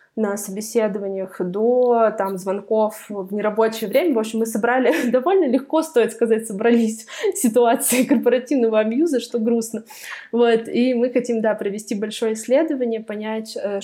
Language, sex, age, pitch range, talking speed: Russian, female, 20-39, 200-255 Hz, 135 wpm